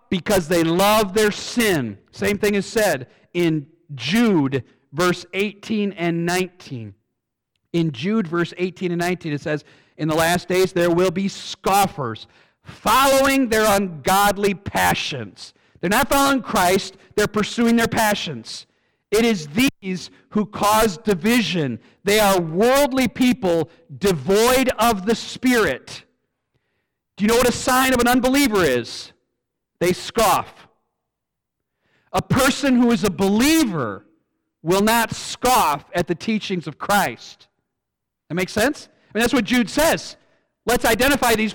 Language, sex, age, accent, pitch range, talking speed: English, male, 50-69, American, 175-245 Hz, 135 wpm